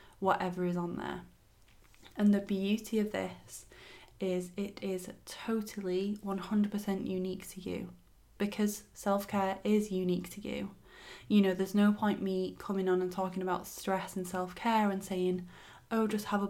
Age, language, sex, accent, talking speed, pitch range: 20-39, English, female, British, 155 wpm, 180-205 Hz